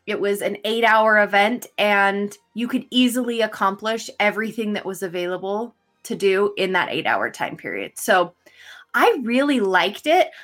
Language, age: English, 20-39